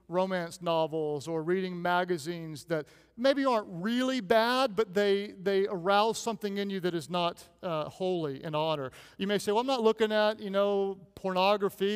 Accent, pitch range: American, 165-205 Hz